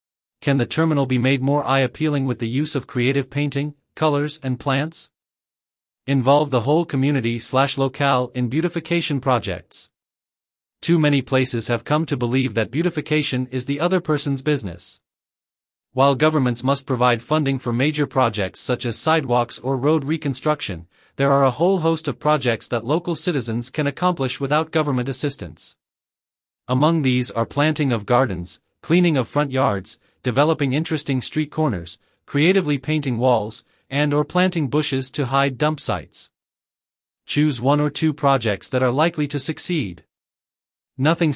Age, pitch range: 40-59, 125-150 Hz